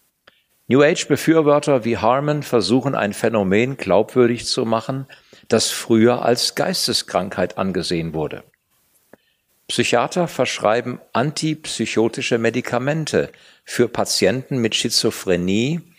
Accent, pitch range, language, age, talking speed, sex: German, 105-140 Hz, German, 50-69, 95 wpm, male